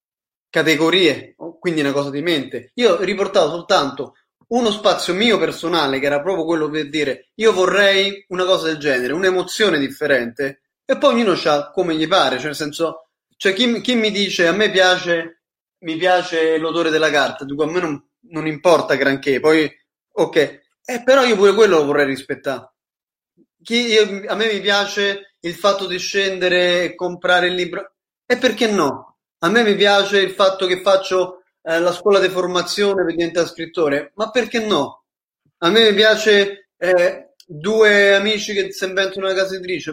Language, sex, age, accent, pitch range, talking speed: Italian, male, 20-39, native, 155-200 Hz, 175 wpm